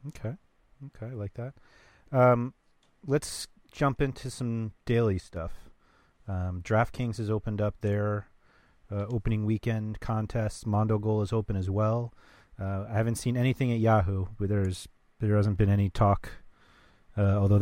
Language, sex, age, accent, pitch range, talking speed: English, male, 30-49, American, 95-115 Hz, 145 wpm